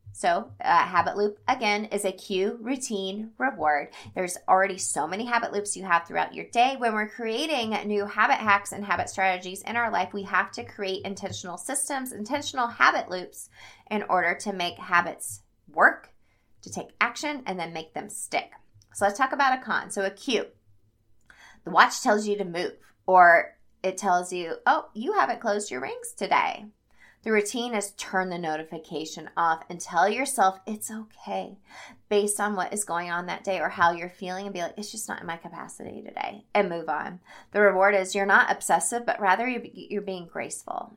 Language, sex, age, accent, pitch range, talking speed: English, female, 30-49, American, 180-215 Hz, 190 wpm